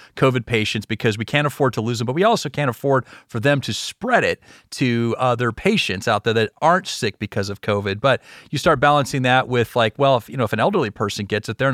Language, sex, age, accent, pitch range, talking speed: English, male, 30-49, American, 110-140 Hz, 250 wpm